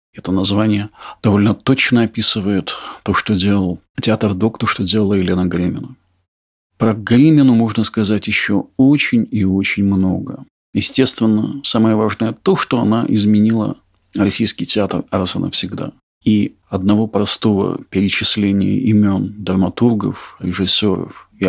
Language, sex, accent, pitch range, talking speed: Russian, male, native, 95-120 Hz, 125 wpm